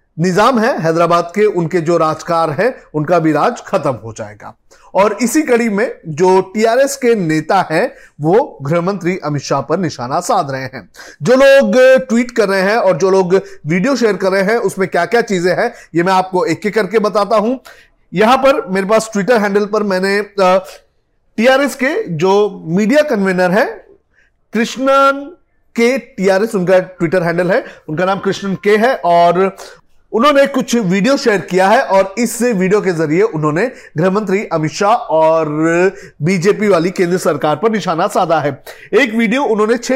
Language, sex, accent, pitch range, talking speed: Hindi, male, native, 175-230 Hz, 170 wpm